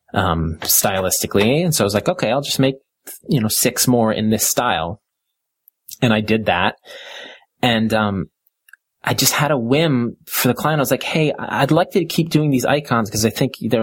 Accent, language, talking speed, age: American, English, 205 wpm, 30-49